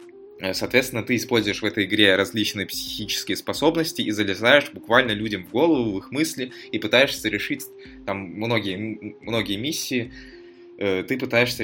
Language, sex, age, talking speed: Russian, male, 20-39, 140 wpm